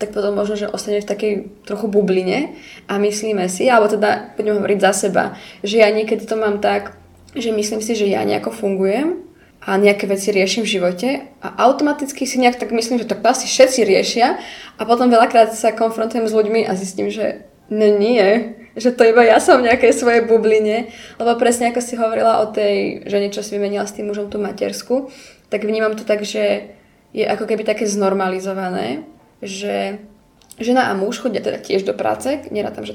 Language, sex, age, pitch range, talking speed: Slovak, female, 20-39, 195-230 Hz, 195 wpm